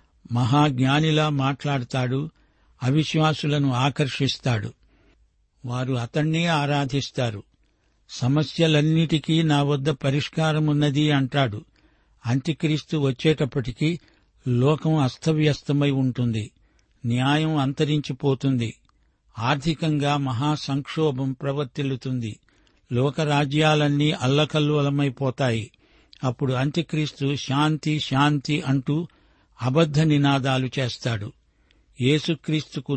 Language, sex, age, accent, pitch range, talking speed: Telugu, male, 60-79, native, 130-150 Hz, 65 wpm